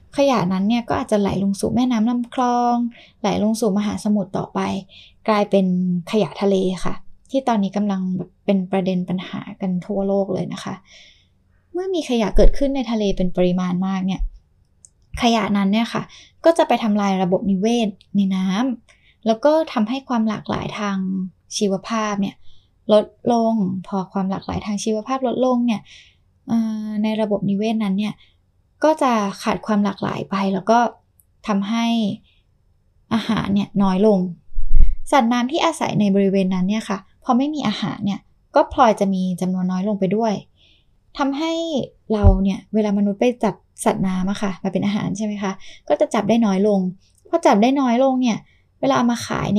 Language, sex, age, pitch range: Thai, female, 10-29, 190-230 Hz